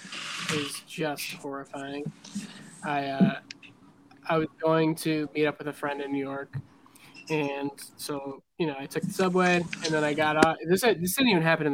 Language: English